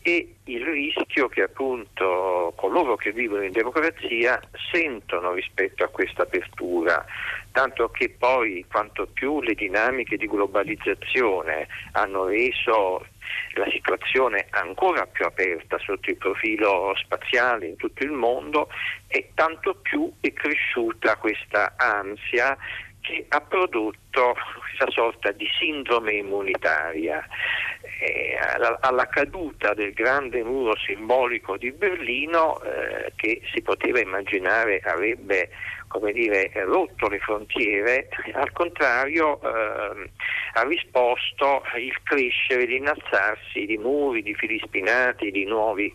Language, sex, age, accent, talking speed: Italian, male, 50-69, native, 115 wpm